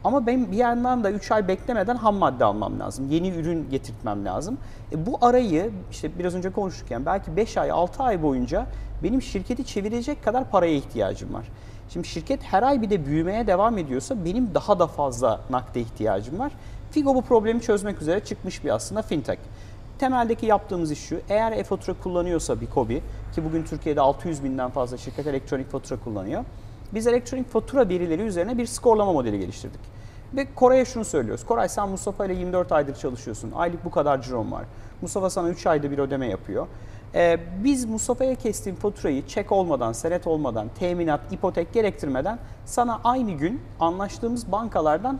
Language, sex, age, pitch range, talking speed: Turkish, male, 40-59, 140-220 Hz, 170 wpm